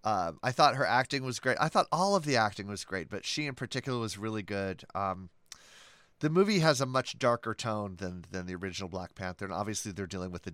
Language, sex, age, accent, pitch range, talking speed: English, male, 30-49, American, 95-130 Hz, 240 wpm